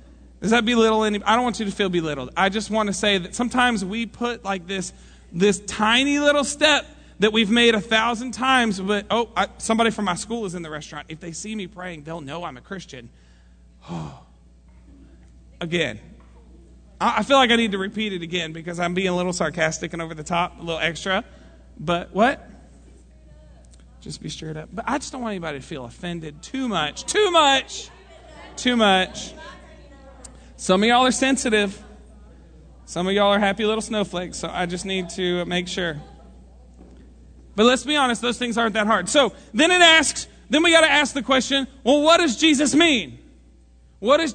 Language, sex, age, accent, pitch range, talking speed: English, male, 40-59, American, 165-245 Hz, 195 wpm